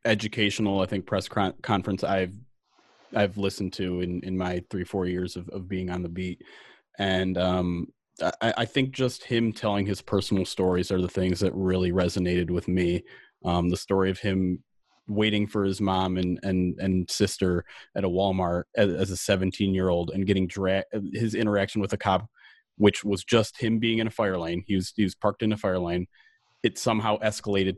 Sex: male